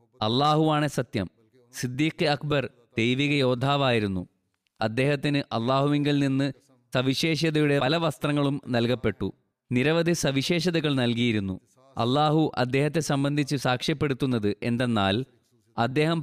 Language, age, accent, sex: Malayalam, 20-39, native, male